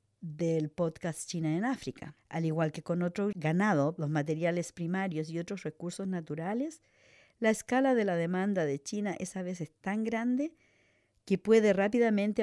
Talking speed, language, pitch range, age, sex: 160 wpm, English, 150-190 Hz, 50-69, female